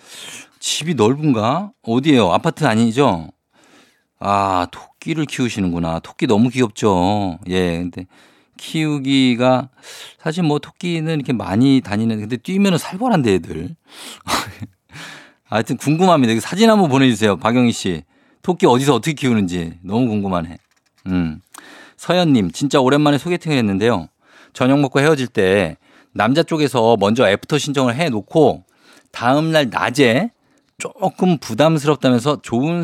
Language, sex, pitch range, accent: Korean, male, 105-170 Hz, native